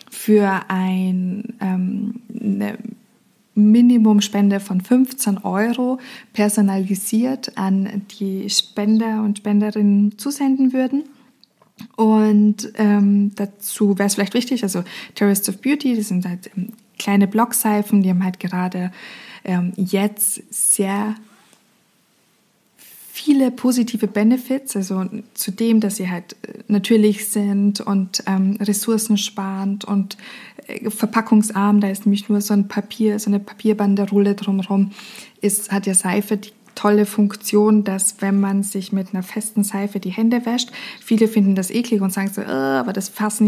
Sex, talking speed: female, 130 wpm